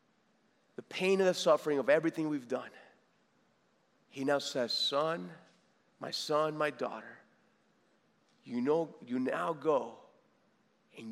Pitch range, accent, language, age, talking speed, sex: 150-255 Hz, American, English, 30-49, 120 wpm, male